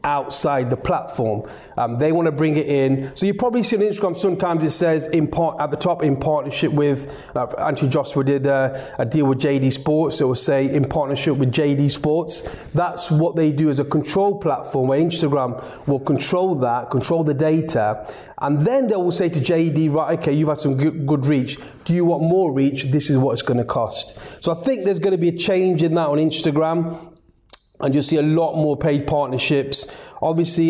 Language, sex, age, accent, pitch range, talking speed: English, male, 30-49, British, 135-160 Hz, 210 wpm